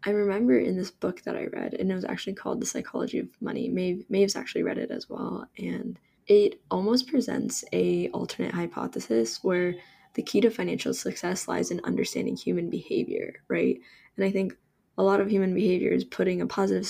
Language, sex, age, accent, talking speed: English, female, 10-29, American, 190 wpm